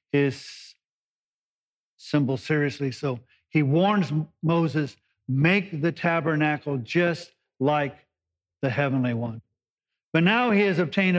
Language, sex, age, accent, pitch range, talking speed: English, male, 50-69, American, 140-170 Hz, 105 wpm